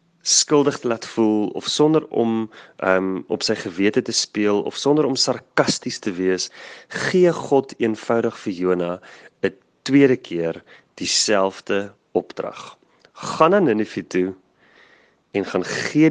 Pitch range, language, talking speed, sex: 95-130 Hz, English, 140 wpm, male